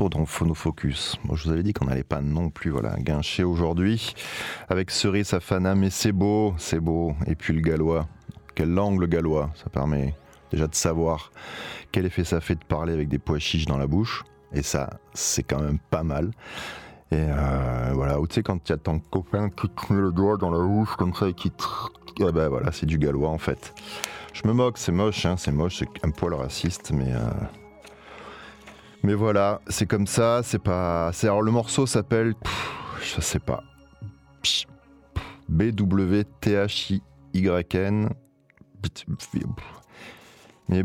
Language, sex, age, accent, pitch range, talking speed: French, male, 30-49, French, 75-100 Hz, 185 wpm